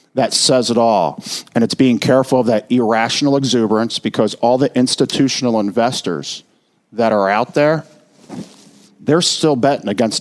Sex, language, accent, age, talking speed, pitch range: male, English, American, 50-69, 145 wpm, 120-150 Hz